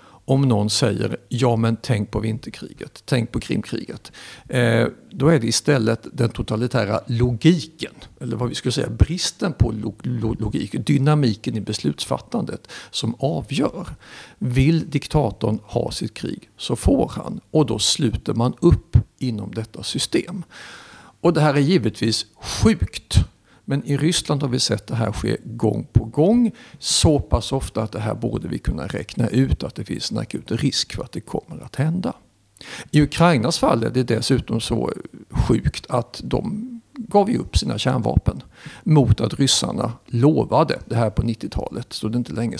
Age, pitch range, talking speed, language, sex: 50-69, 110-140 Hz, 165 wpm, Swedish, male